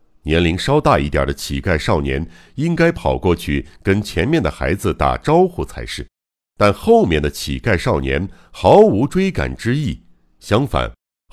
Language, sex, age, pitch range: Chinese, male, 60-79, 70-115 Hz